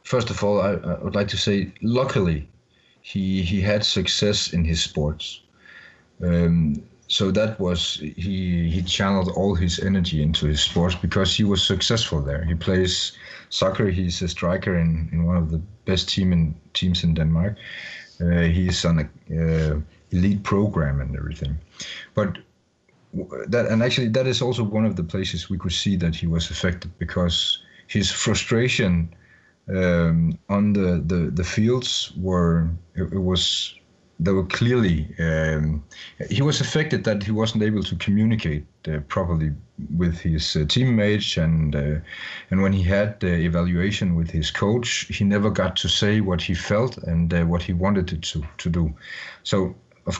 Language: English